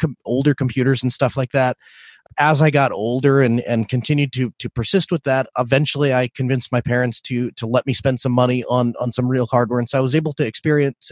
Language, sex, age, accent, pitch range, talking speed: English, male, 30-49, American, 130-175 Hz, 230 wpm